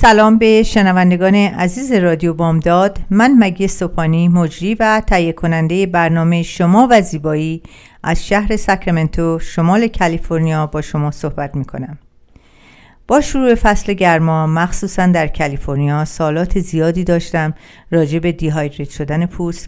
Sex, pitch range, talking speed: female, 155-195 Hz, 125 wpm